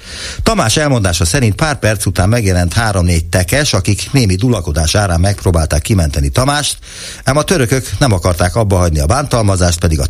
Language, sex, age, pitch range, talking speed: Hungarian, male, 60-79, 85-120 Hz, 155 wpm